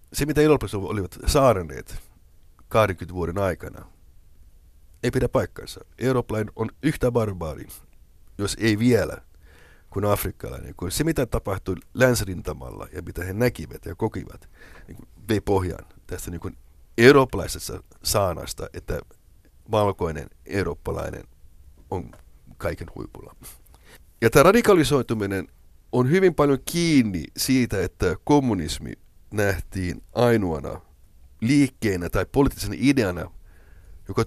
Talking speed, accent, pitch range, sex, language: 105 wpm, native, 85-120 Hz, male, Finnish